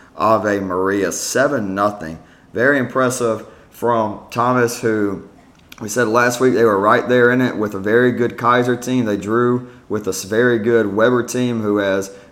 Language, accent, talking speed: English, American, 170 wpm